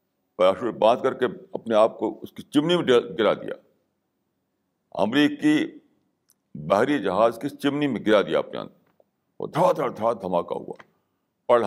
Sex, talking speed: male, 140 wpm